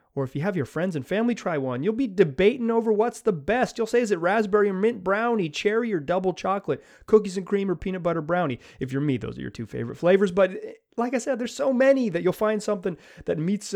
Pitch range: 145-210 Hz